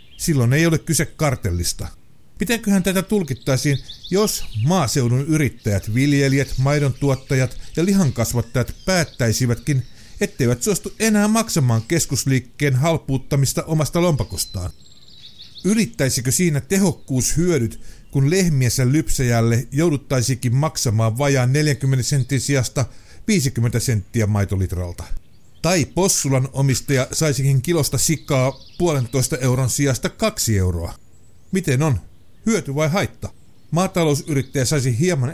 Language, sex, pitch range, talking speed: Finnish, male, 120-170 Hz, 100 wpm